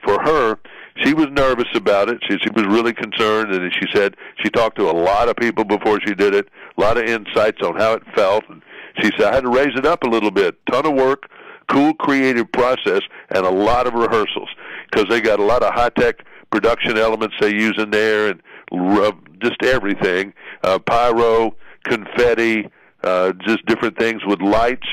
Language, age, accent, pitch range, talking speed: English, 60-79, American, 105-130 Hz, 200 wpm